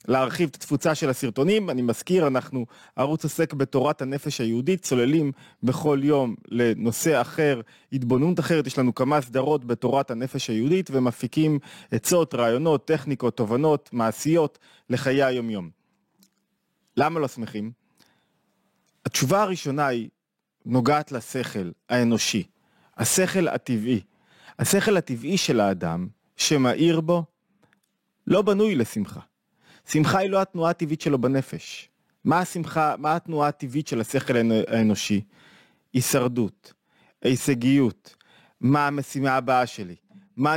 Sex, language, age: male, Hebrew, 30-49